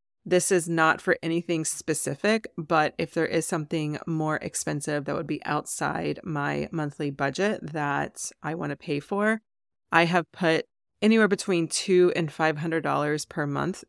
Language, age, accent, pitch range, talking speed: English, 30-49, American, 155-180 Hz, 155 wpm